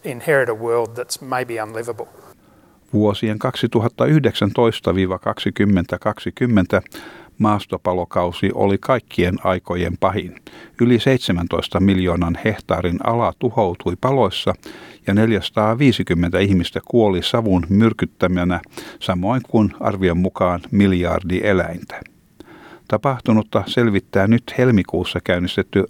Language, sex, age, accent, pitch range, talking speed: Finnish, male, 50-69, native, 90-115 Hz, 70 wpm